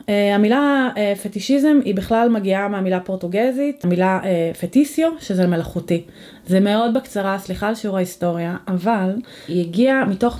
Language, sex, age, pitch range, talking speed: Hebrew, female, 30-49, 185-235 Hz, 125 wpm